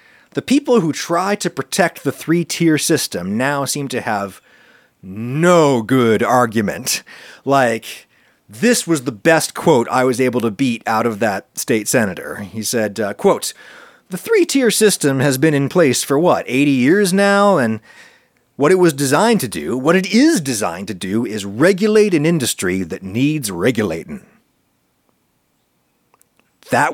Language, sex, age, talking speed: English, male, 30-49, 155 wpm